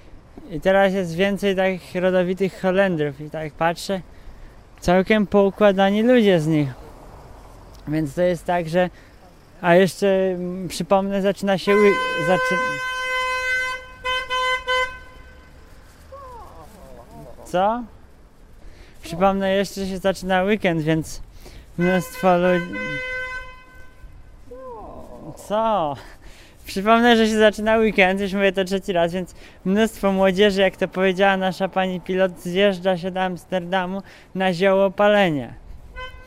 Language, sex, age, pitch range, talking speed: Polish, male, 20-39, 165-200 Hz, 105 wpm